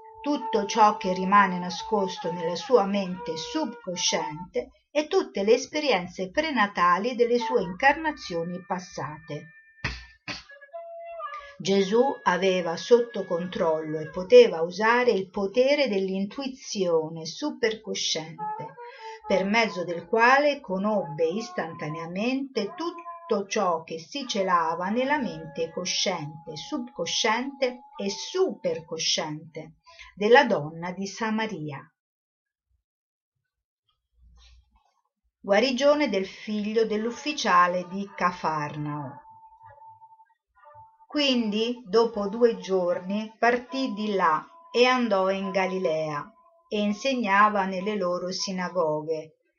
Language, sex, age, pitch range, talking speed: Italian, female, 50-69, 180-265 Hz, 85 wpm